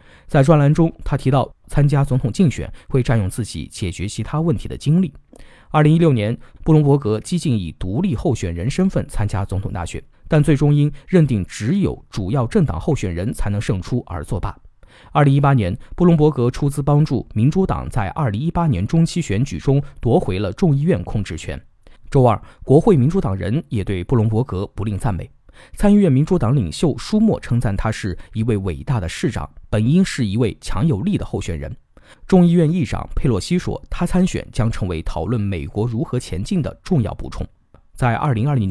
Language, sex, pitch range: Chinese, male, 105-150 Hz